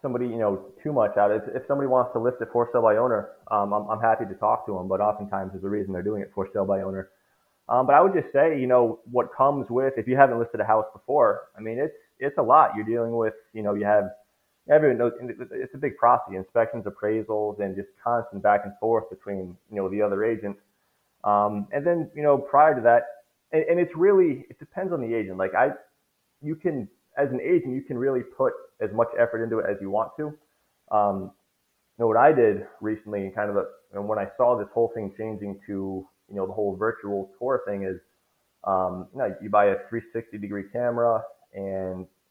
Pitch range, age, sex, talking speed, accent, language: 100-125 Hz, 20-39, male, 235 wpm, American, English